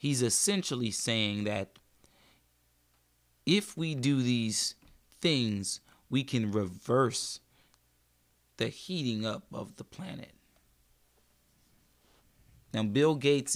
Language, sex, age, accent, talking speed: English, male, 30-49, American, 95 wpm